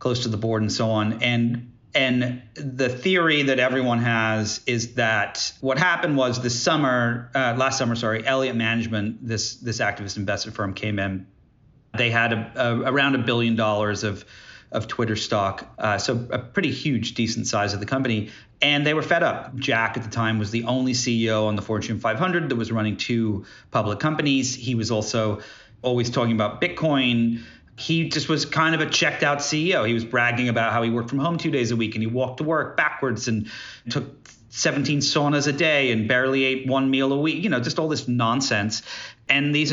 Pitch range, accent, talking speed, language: 115-140 Hz, American, 205 wpm, English